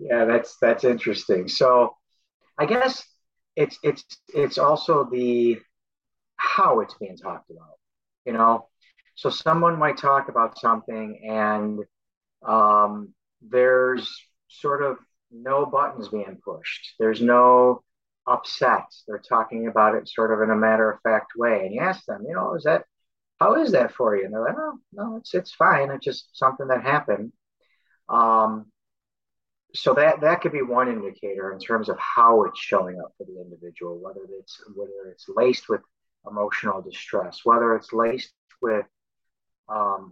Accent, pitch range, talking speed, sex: American, 105-130 Hz, 160 wpm, male